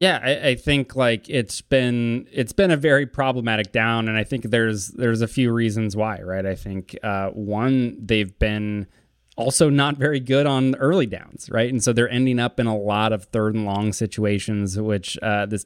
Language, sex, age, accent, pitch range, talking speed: English, male, 20-39, American, 105-120 Hz, 205 wpm